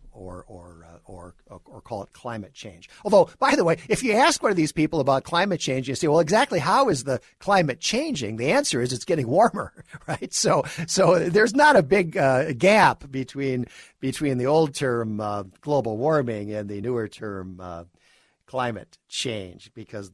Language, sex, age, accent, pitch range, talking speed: English, male, 50-69, American, 105-170 Hz, 190 wpm